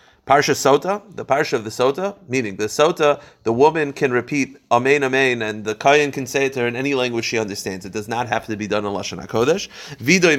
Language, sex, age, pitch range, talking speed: English, male, 30-49, 110-145 Hz, 230 wpm